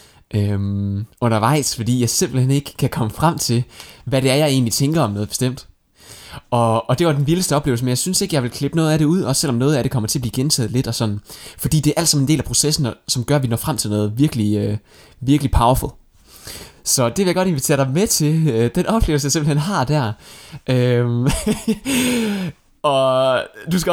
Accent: native